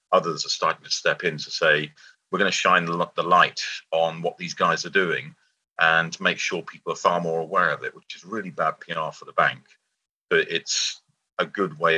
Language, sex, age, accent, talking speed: English, male, 40-59, British, 215 wpm